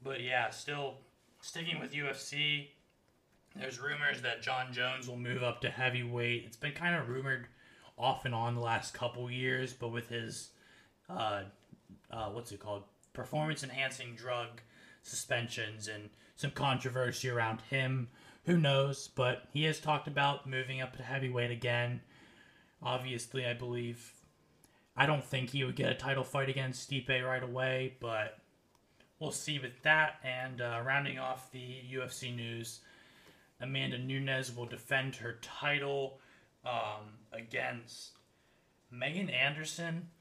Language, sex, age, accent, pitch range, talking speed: English, male, 20-39, American, 120-135 Hz, 140 wpm